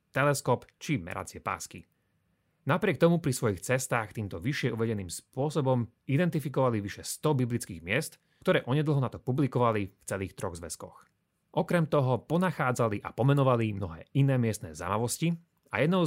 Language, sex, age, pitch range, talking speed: Slovak, male, 30-49, 110-145 Hz, 140 wpm